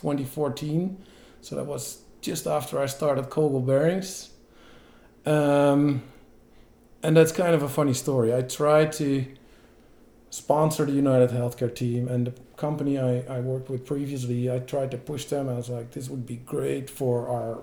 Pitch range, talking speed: 125-155 Hz, 165 wpm